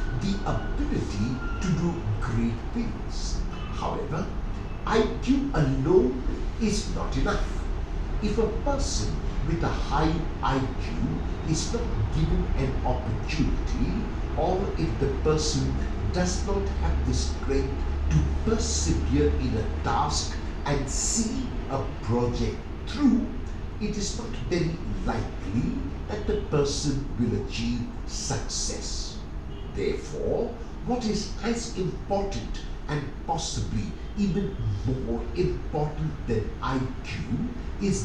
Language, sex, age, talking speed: English, male, 60-79, 105 wpm